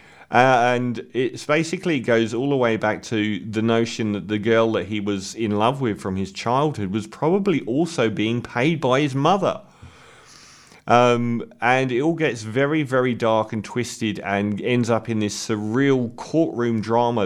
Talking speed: 175 wpm